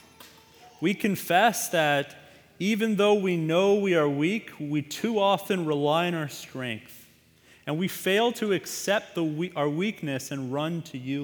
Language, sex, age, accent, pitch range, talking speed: English, male, 30-49, American, 125-180 Hz, 160 wpm